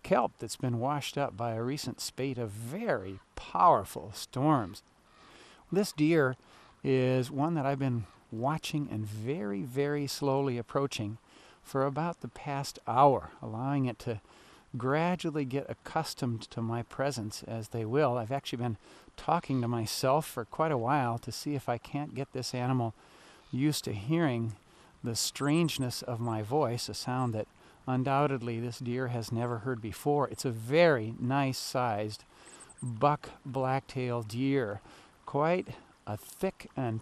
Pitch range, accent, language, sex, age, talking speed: 120-145 Hz, American, English, male, 40-59, 145 wpm